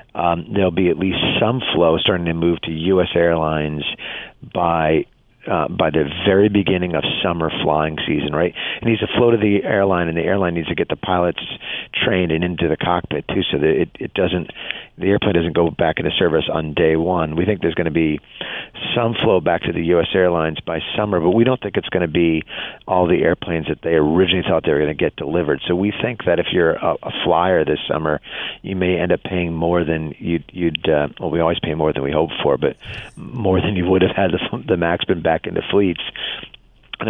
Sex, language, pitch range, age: male, English, 80-95 Hz, 40-59